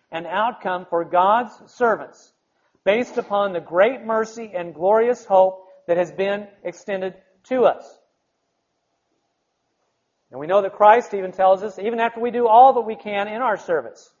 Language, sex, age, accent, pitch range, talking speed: English, male, 40-59, American, 165-215 Hz, 160 wpm